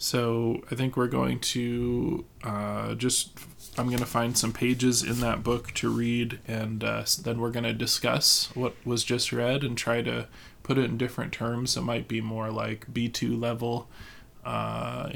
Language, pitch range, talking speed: English, 115-125 Hz, 180 wpm